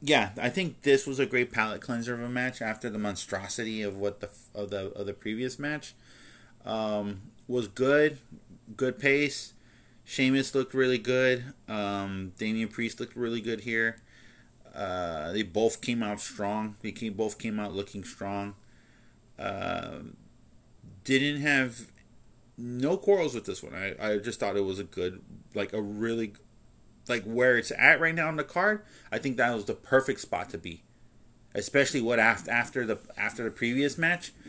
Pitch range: 100-125 Hz